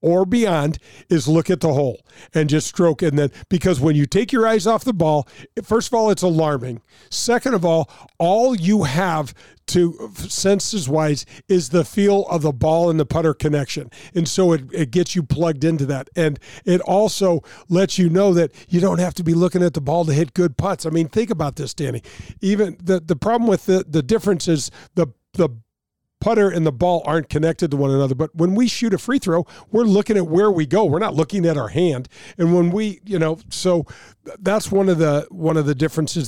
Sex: male